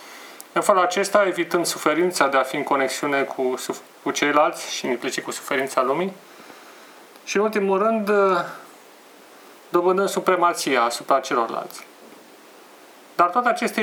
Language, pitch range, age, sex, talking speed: Romanian, 145-185 Hz, 30-49, male, 125 wpm